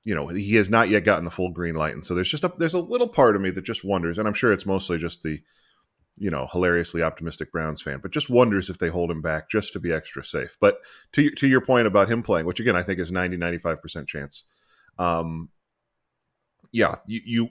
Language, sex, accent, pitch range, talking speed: English, male, American, 85-105 Hz, 235 wpm